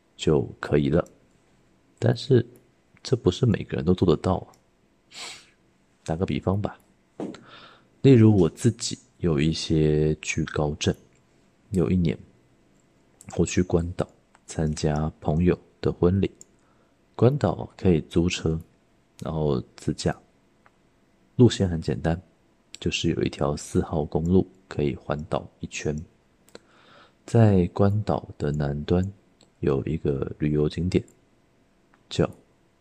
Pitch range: 75-95 Hz